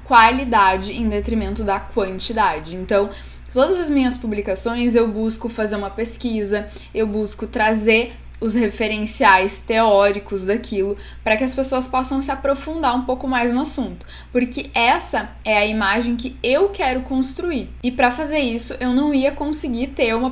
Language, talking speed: Portuguese, 155 wpm